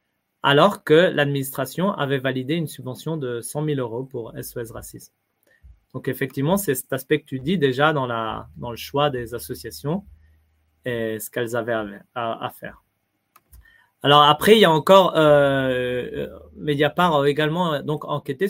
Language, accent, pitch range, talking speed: French, French, 120-155 Hz, 160 wpm